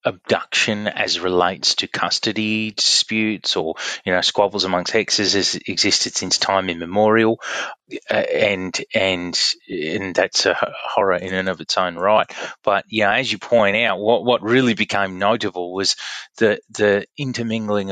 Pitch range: 100-130 Hz